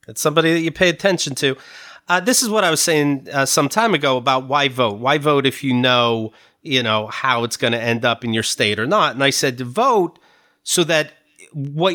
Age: 30-49